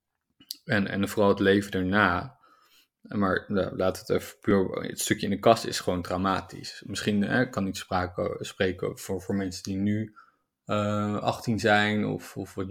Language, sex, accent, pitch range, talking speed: Dutch, male, Dutch, 90-105 Hz, 175 wpm